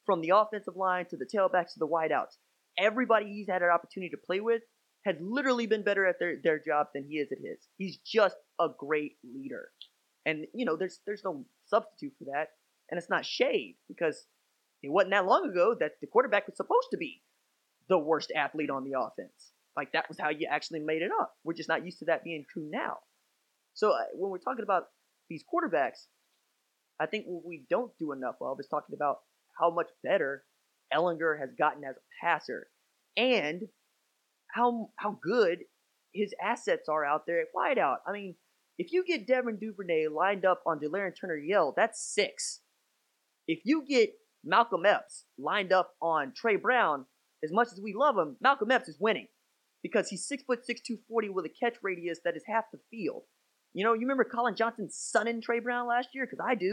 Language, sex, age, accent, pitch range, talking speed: English, male, 20-39, American, 170-245 Hz, 200 wpm